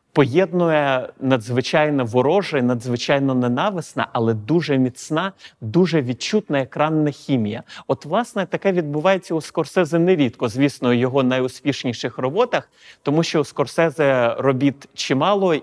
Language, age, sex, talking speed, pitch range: Ukrainian, 30-49, male, 115 wpm, 130-170 Hz